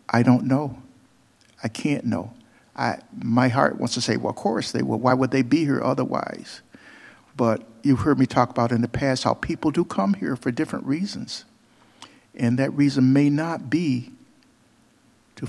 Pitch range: 125-150 Hz